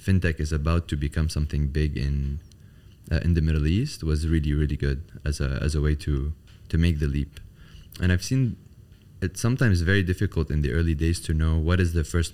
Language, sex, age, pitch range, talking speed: English, male, 30-49, 80-95 Hz, 215 wpm